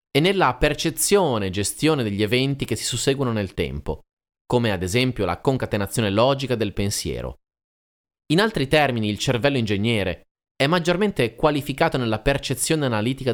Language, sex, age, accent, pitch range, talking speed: Italian, male, 30-49, native, 100-140 Hz, 145 wpm